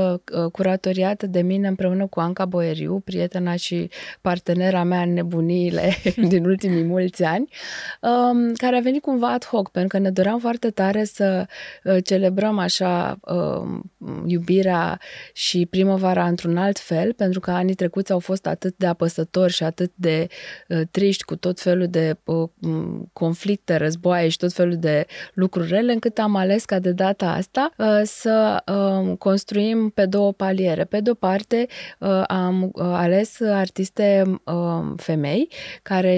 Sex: female